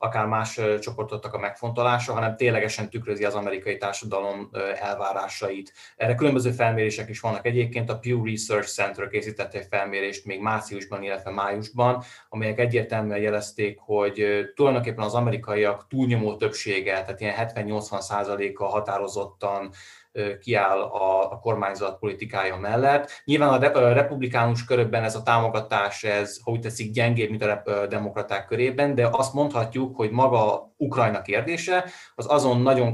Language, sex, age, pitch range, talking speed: Hungarian, male, 20-39, 100-120 Hz, 135 wpm